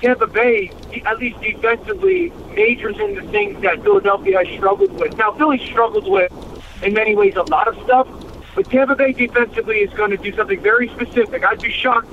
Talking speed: 195 wpm